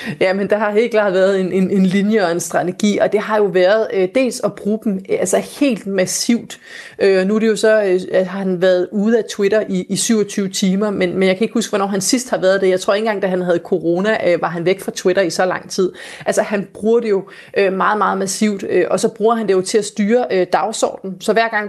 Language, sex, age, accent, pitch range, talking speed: Danish, female, 30-49, native, 185-215 Hz, 265 wpm